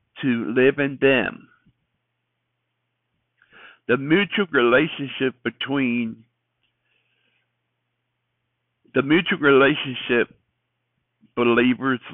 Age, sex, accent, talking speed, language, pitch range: 60-79, male, American, 60 wpm, English, 115-135 Hz